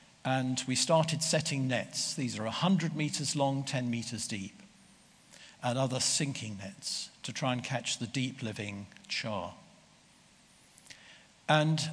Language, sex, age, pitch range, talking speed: English, male, 60-79, 115-160 Hz, 130 wpm